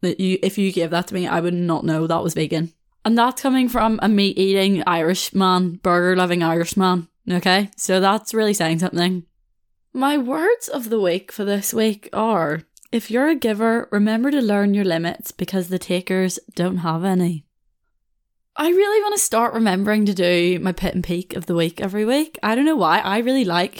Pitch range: 175-220 Hz